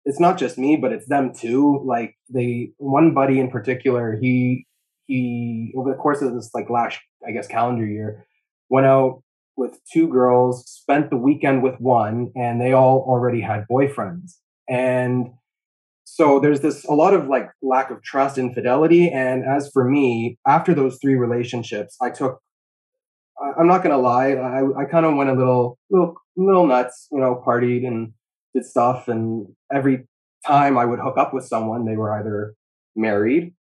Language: English